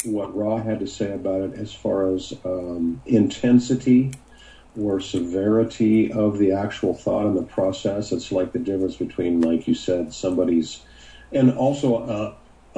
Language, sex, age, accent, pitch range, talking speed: English, male, 50-69, American, 100-120 Hz, 155 wpm